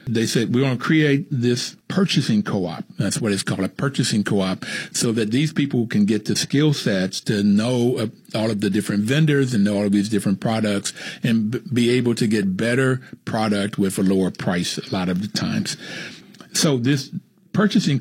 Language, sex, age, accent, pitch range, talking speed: English, male, 60-79, American, 105-135 Hz, 200 wpm